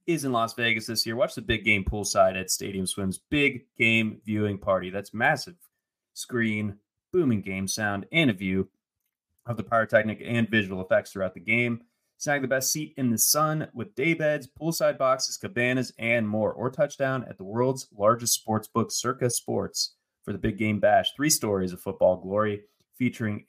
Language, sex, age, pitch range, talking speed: English, male, 30-49, 105-130 Hz, 185 wpm